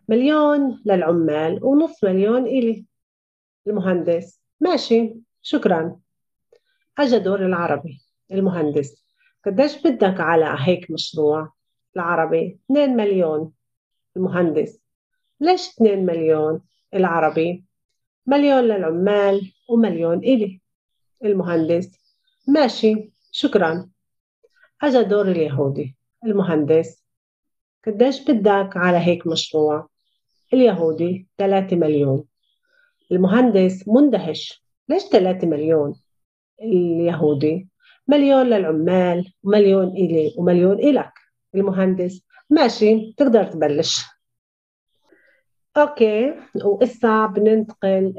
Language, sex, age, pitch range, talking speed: Hebrew, female, 40-59, 165-240 Hz, 75 wpm